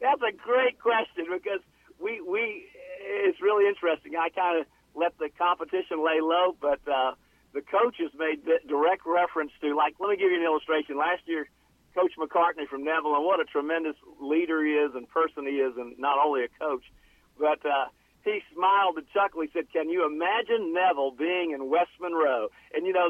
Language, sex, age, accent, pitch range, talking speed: English, male, 50-69, American, 135-175 Hz, 195 wpm